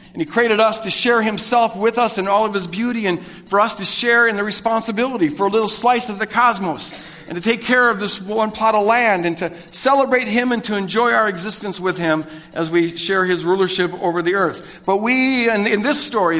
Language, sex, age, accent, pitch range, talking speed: English, male, 50-69, American, 185-245 Hz, 235 wpm